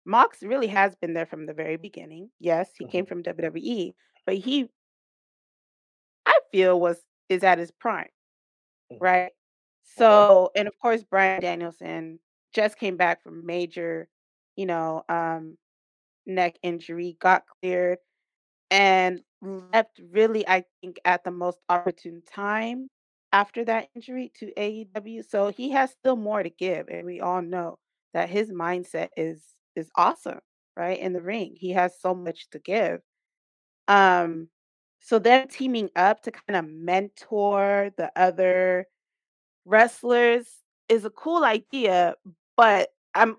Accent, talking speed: American, 145 wpm